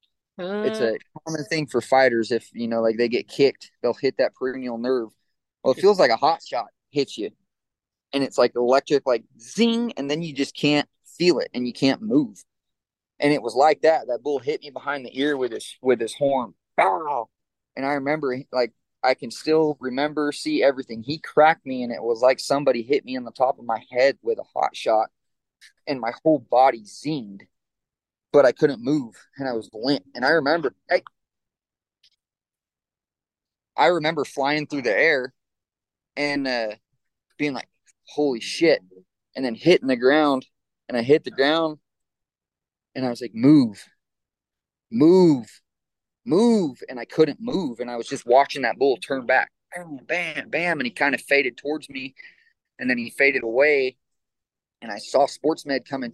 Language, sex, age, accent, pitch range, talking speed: English, male, 20-39, American, 125-155 Hz, 180 wpm